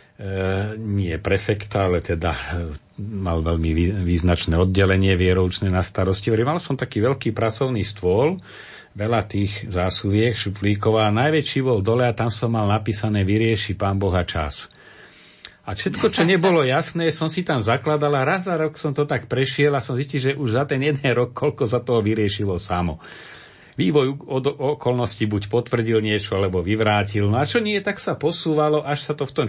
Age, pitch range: 40-59, 100-135 Hz